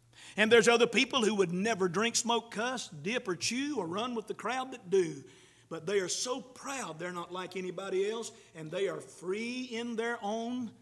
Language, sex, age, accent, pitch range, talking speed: English, male, 50-69, American, 165-240 Hz, 205 wpm